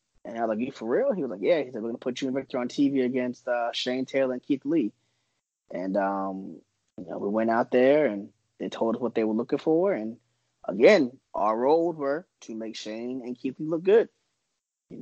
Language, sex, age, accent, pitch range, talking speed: English, male, 20-39, American, 110-140 Hz, 240 wpm